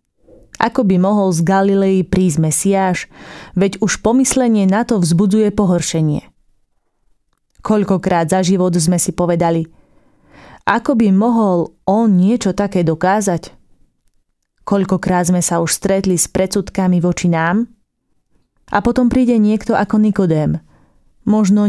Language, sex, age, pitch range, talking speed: Slovak, female, 20-39, 180-210 Hz, 120 wpm